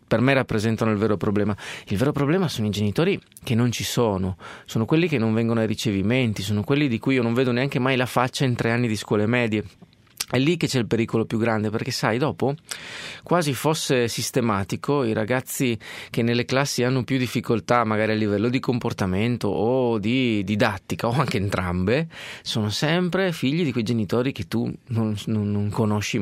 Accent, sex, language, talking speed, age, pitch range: native, male, Italian, 190 wpm, 30-49, 105-135 Hz